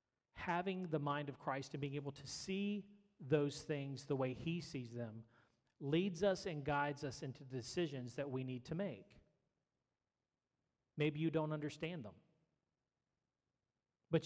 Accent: American